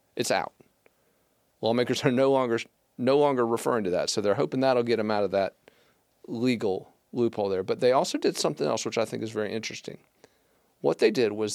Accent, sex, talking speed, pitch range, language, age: American, male, 205 wpm, 105-125 Hz, English, 40-59